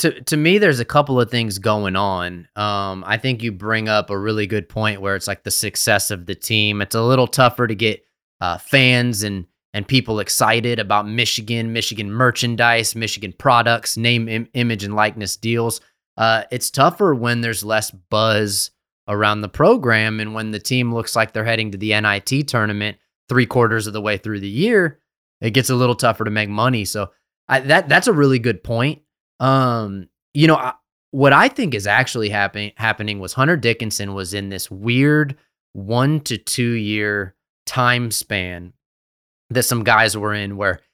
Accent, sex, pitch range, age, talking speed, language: American, male, 105-130 Hz, 20-39, 185 wpm, English